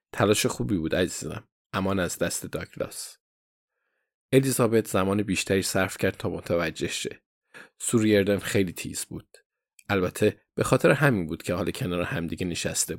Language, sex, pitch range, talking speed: Persian, male, 95-125 Hz, 140 wpm